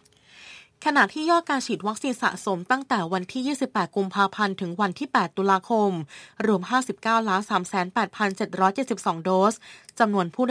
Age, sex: 20-39, female